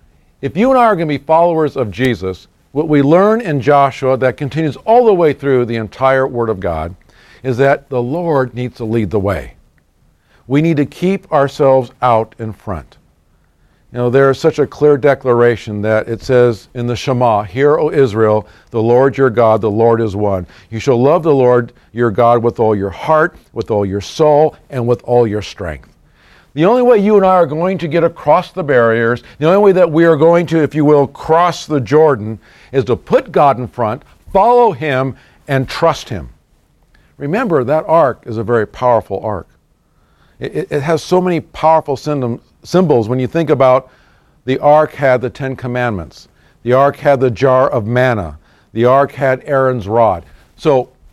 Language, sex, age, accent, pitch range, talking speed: English, male, 50-69, American, 115-150 Hz, 195 wpm